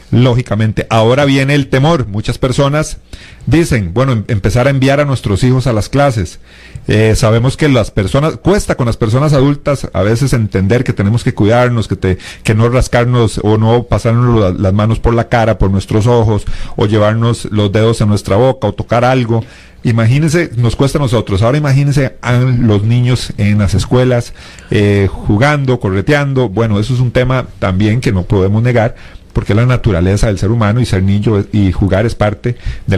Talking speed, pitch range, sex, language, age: 185 wpm, 100-125 Hz, male, Spanish, 40-59